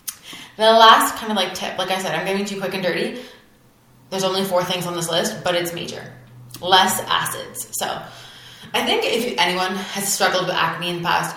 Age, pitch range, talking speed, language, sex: 20-39, 175-205 Hz, 210 wpm, English, female